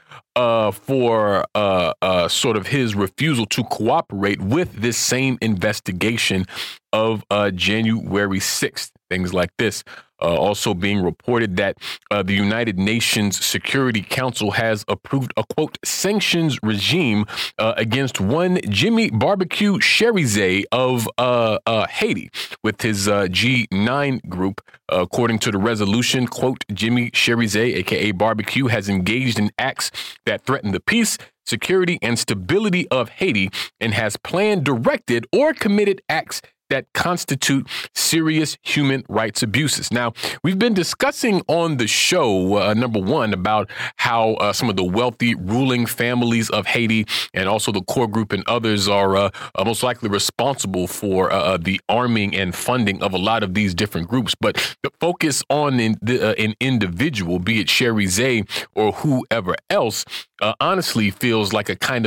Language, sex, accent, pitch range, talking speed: English, male, American, 100-130 Hz, 150 wpm